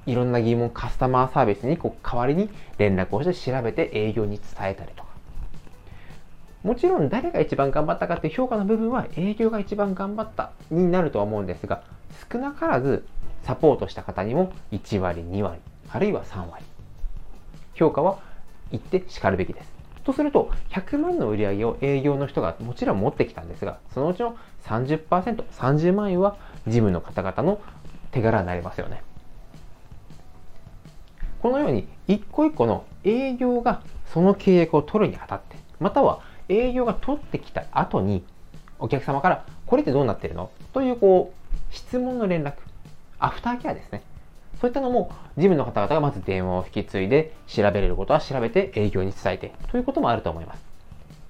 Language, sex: Japanese, male